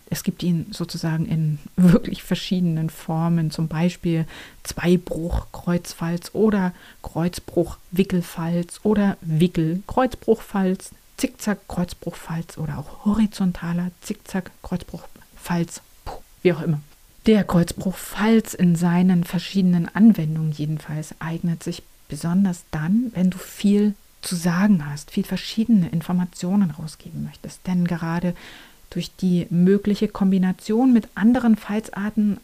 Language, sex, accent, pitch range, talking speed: German, female, German, 170-205 Hz, 105 wpm